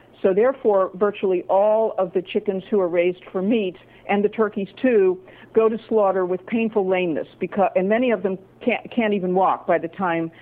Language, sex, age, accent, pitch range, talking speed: English, female, 50-69, American, 175-215 Hz, 195 wpm